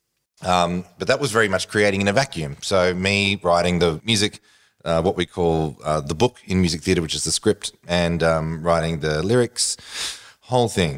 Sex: male